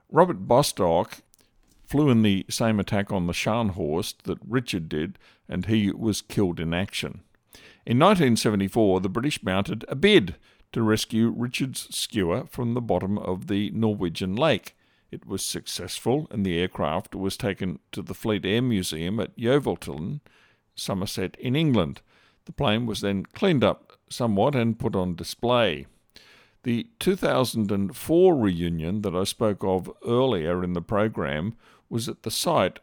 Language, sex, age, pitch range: English, male, 50-69, 95-120 Hz